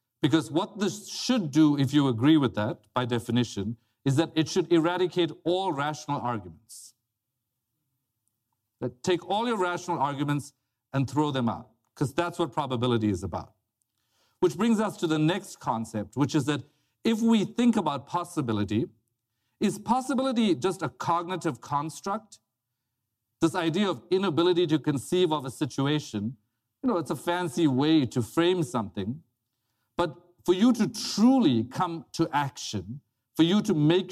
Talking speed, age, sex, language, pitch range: 150 wpm, 50-69, male, English, 115-170 Hz